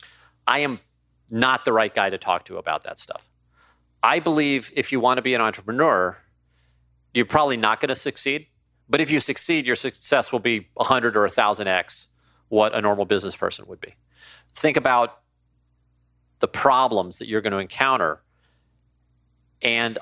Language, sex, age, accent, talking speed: English, male, 40-59, American, 155 wpm